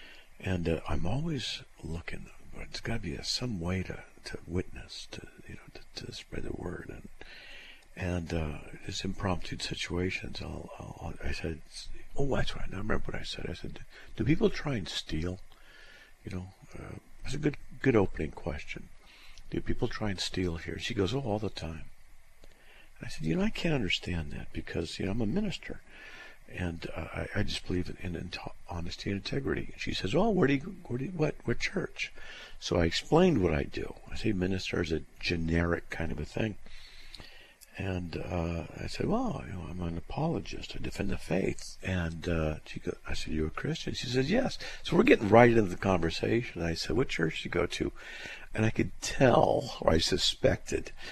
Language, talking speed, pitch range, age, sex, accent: English, 205 wpm, 85-115 Hz, 60-79, male, American